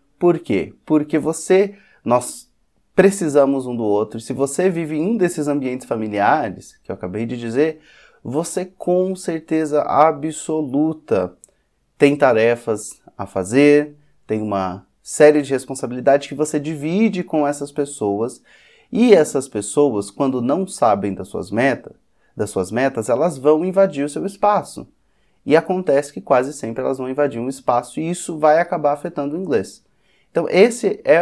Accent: Brazilian